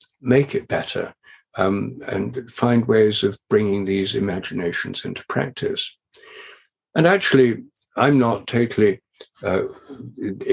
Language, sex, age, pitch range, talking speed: English, male, 60-79, 105-140 Hz, 110 wpm